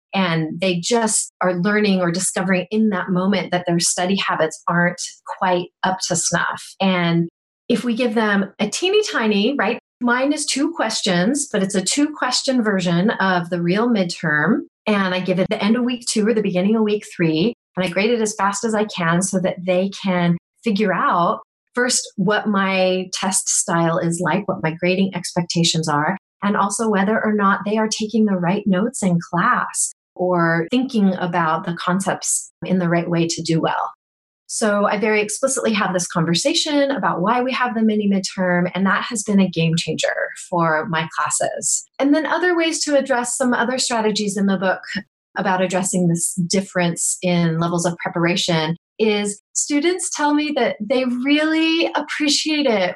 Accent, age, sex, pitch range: American, 30-49, female, 180-235 Hz